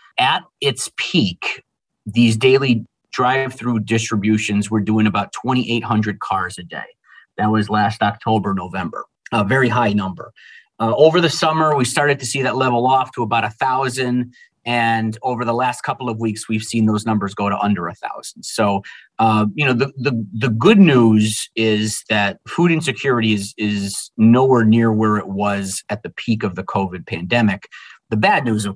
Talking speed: 175 wpm